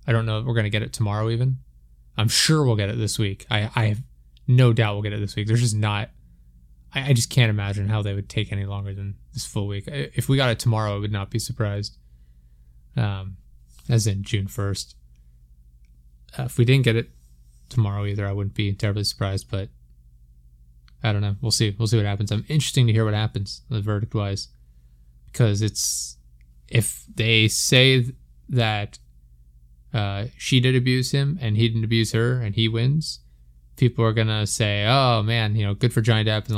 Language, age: English, 20-39